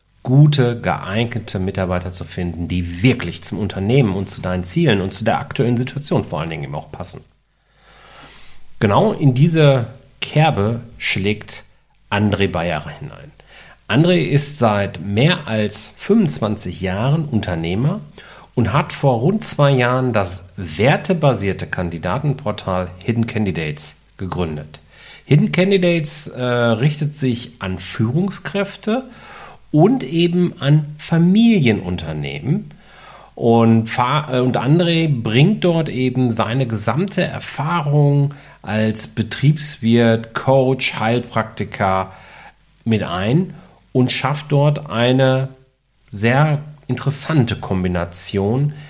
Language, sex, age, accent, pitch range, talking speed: German, male, 40-59, German, 100-145 Hz, 100 wpm